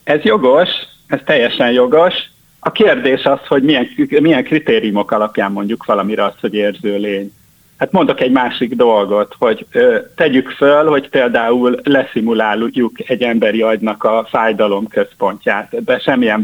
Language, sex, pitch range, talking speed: Hungarian, male, 105-140 Hz, 140 wpm